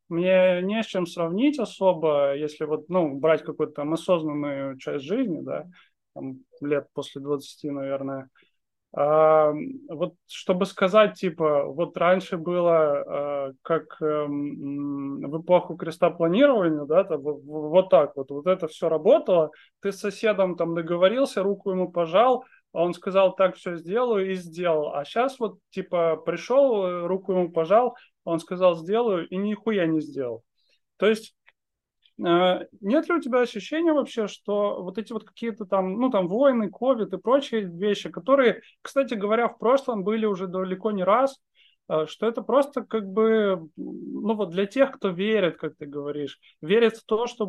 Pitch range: 160-220 Hz